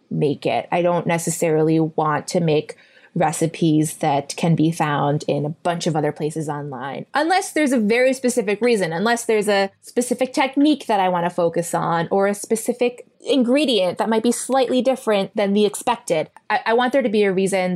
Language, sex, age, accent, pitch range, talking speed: English, female, 20-39, American, 165-230 Hz, 195 wpm